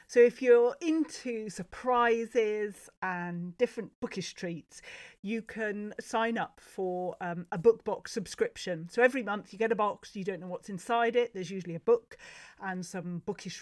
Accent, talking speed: British, 170 wpm